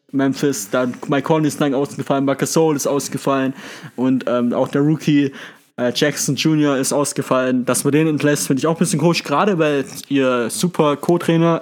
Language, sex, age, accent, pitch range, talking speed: German, male, 20-39, German, 135-165 Hz, 175 wpm